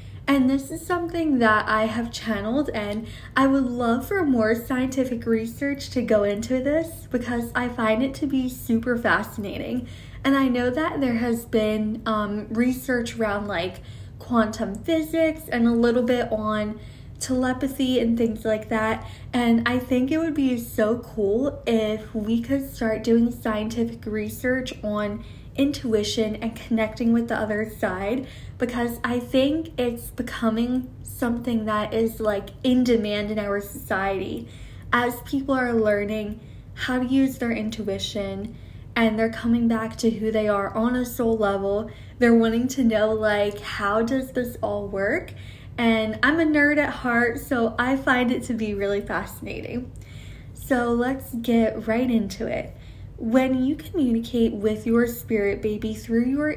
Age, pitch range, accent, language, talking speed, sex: 10-29, 215-255 Hz, American, English, 155 wpm, female